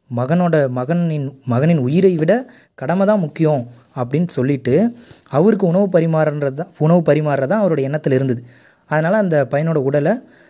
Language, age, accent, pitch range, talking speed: Tamil, 20-39, native, 130-175 Hz, 125 wpm